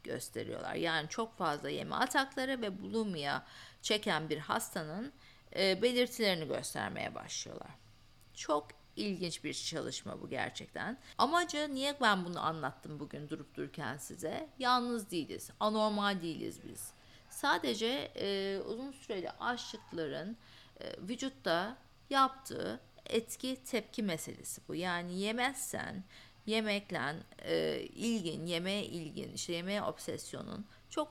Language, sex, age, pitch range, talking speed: Turkish, female, 50-69, 155-225 Hz, 110 wpm